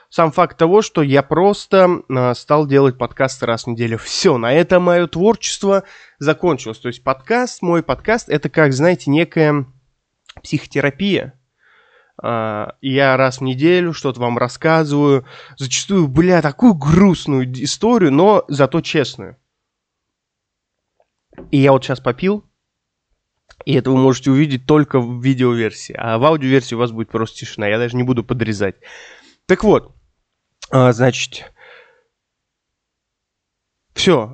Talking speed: 130 wpm